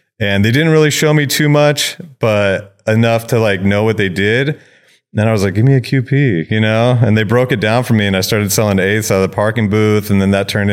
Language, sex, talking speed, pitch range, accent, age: English, male, 275 wpm, 95-110 Hz, American, 30-49